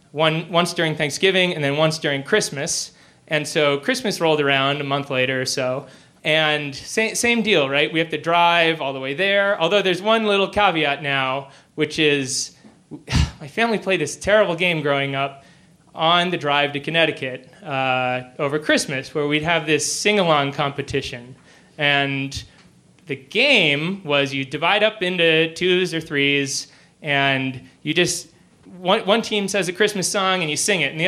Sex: male